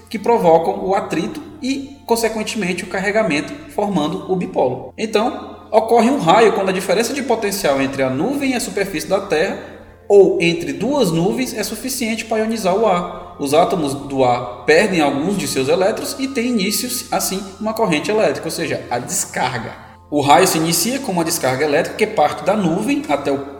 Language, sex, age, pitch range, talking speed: Portuguese, male, 20-39, 145-225 Hz, 180 wpm